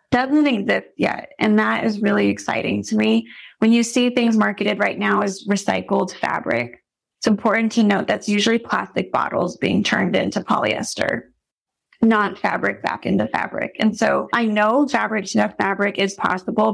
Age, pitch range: 30-49, 195-225 Hz